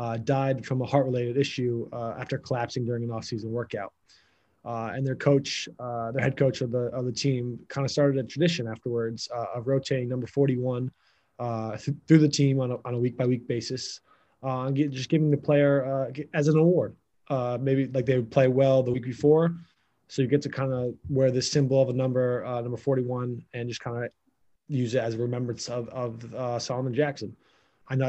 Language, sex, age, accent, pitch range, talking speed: English, male, 20-39, American, 125-140 Hz, 215 wpm